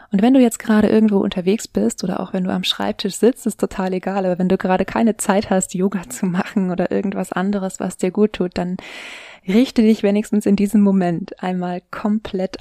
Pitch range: 190-210 Hz